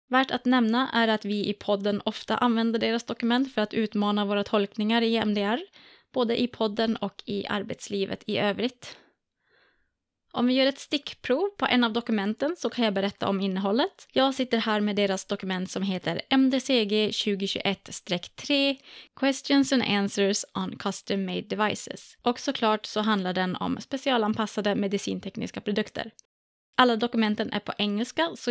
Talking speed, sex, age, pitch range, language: 155 wpm, female, 20-39, 200-250 Hz, Swedish